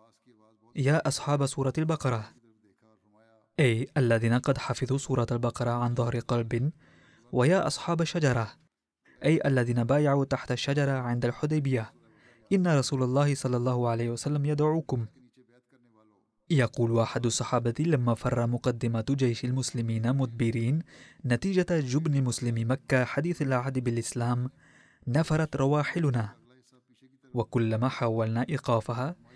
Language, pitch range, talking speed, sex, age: Arabic, 120-140 Hz, 105 wpm, male, 20-39